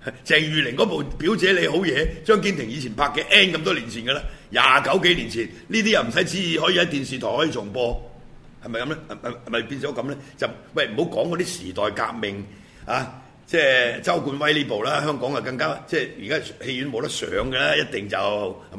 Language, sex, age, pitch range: Chinese, male, 50-69, 115-155 Hz